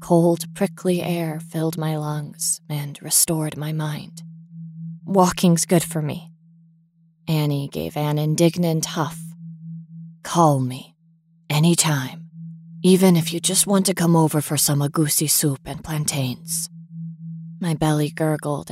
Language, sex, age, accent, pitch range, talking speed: English, female, 20-39, American, 150-165 Hz, 125 wpm